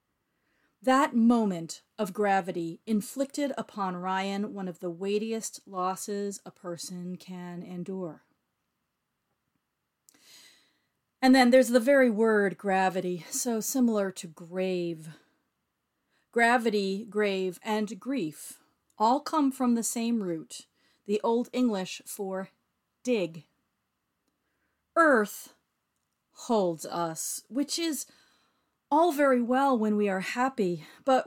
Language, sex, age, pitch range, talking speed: English, female, 40-59, 190-255 Hz, 105 wpm